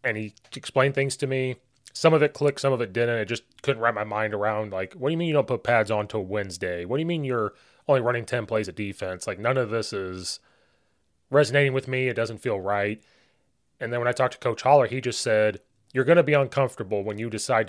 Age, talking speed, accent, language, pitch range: 30-49, 255 wpm, American, English, 110-140 Hz